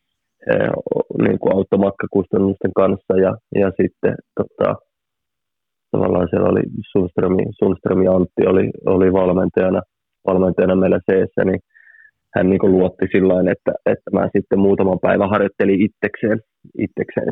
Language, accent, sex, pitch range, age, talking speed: Finnish, native, male, 95-105 Hz, 30-49, 125 wpm